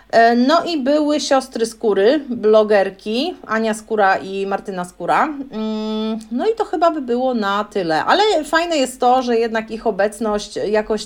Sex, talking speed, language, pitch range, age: female, 150 wpm, Polish, 205-265 Hz, 40-59